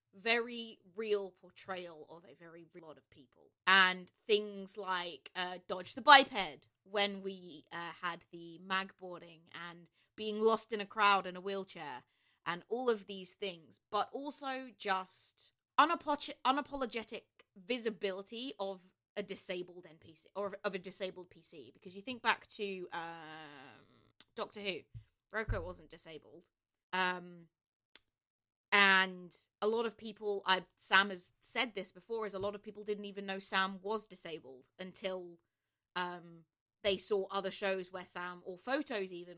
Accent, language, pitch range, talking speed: British, English, 175-205 Hz, 150 wpm